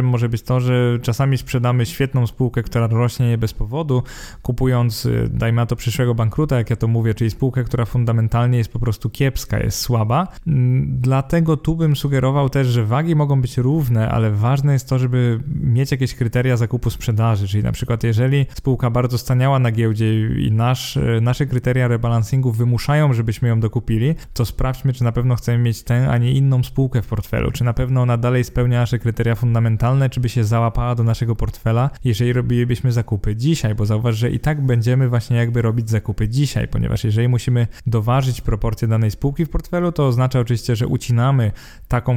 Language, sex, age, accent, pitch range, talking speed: Polish, male, 20-39, native, 115-130 Hz, 185 wpm